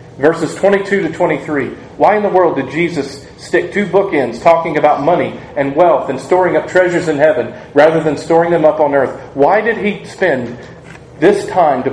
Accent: American